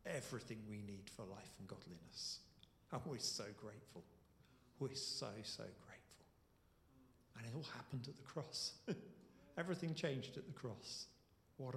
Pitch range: 135-185 Hz